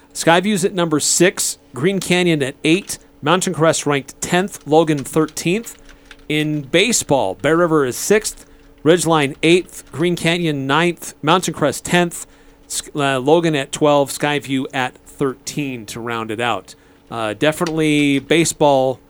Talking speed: 130 wpm